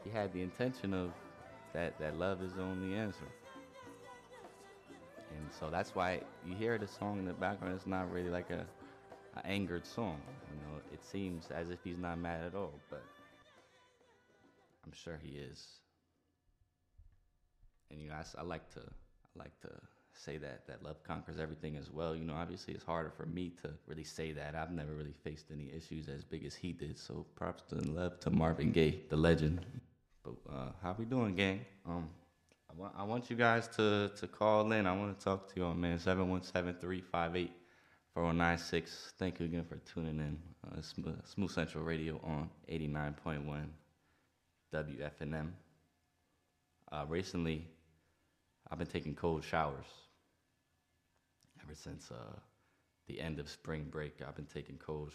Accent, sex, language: American, male, English